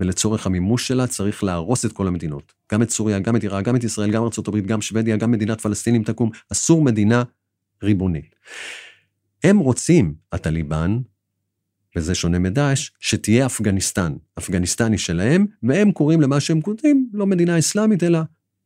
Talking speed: 150 wpm